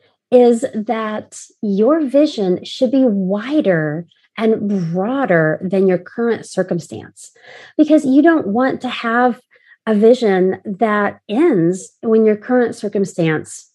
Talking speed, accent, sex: 120 wpm, American, female